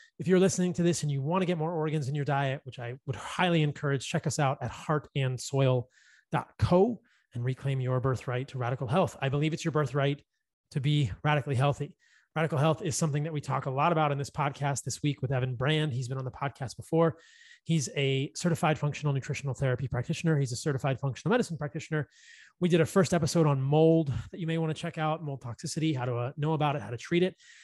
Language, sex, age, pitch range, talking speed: English, male, 30-49, 135-165 Hz, 225 wpm